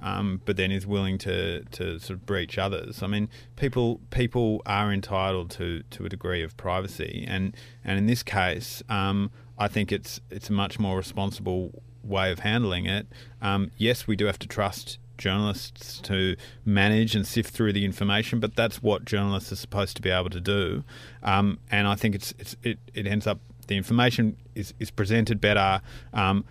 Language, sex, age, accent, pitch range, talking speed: English, male, 30-49, Australian, 95-110 Hz, 190 wpm